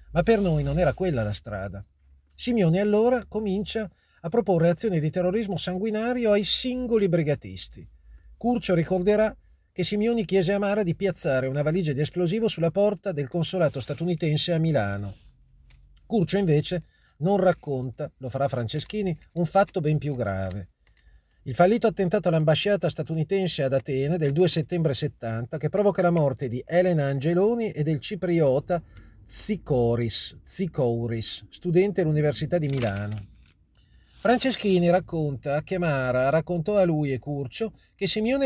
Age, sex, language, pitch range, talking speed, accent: 40-59, male, Italian, 130-185 Hz, 140 wpm, native